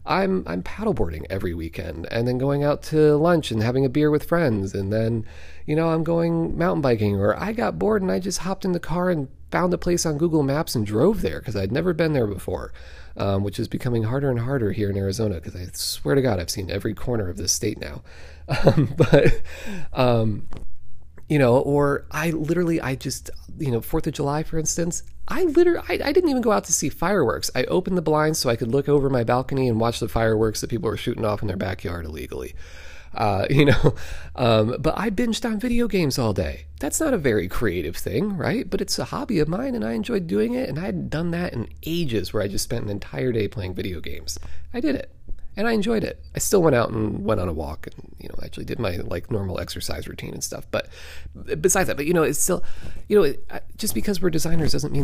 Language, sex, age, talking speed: English, male, 40-59, 240 wpm